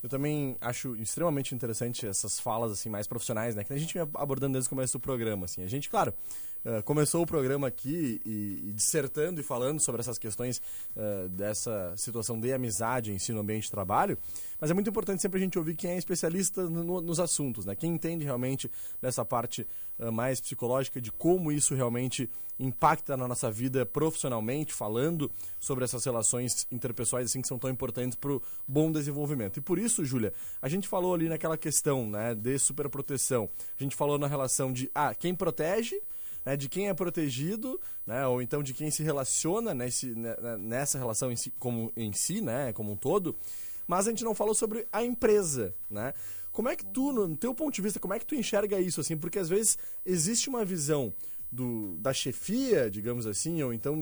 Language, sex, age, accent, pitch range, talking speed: Portuguese, male, 20-39, Brazilian, 120-160 Hz, 195 wpm